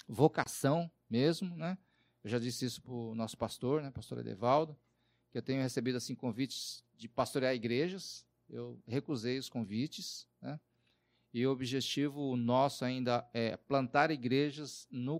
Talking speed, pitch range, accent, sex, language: 145 wpm, 120-155 Hz, Brazilian, male, Portuguese